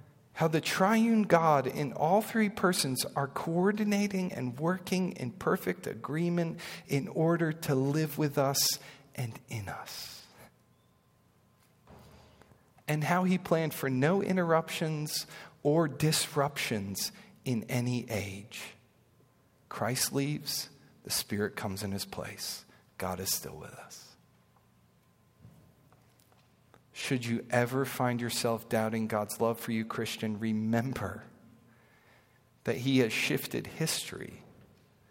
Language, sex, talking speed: English, male, 115 wpm